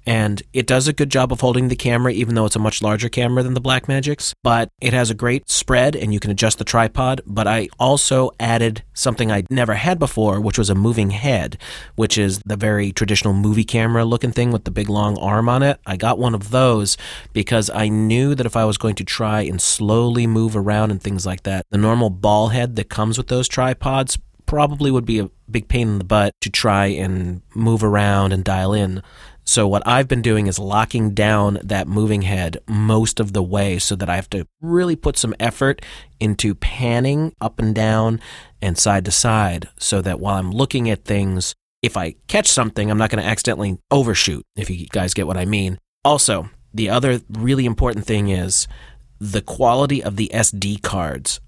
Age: 30-49